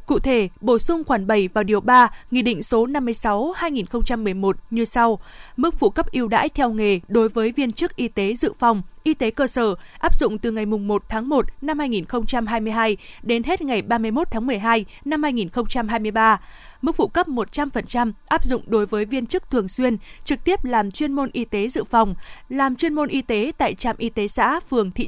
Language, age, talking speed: Vietnamese, 20-39, 200 wpm